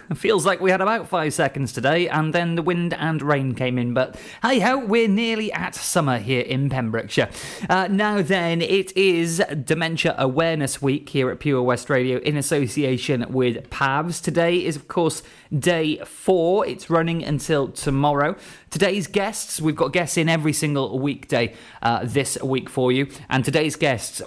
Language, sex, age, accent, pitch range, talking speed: English, male, 20-39, British, 130-165 Hz, 175 wpm